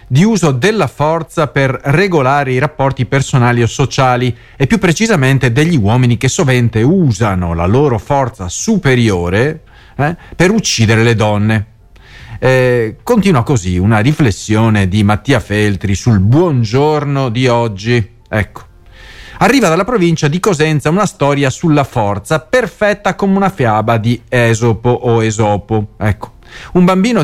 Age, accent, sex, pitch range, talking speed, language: 40-59, native, male, 110-155 Hz, 135 wpm, Italian